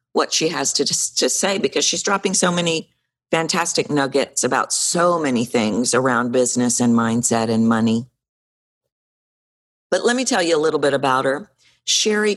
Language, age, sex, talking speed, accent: English, 50-69, female, 170 wpm, American